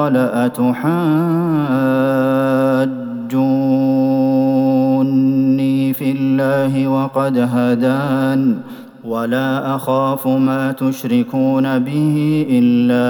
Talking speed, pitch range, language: 55 wpm, 130-150 Hz, Arabic